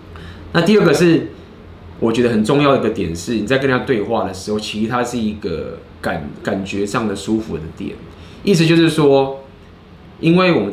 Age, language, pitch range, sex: 20-39, Chinese, 100-140 Hz, male